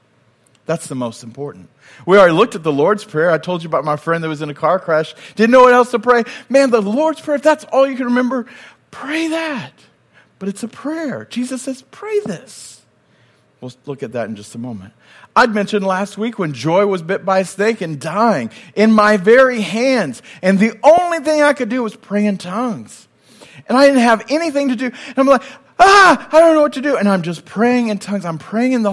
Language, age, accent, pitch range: English, 40-59, American, 165-245 Hz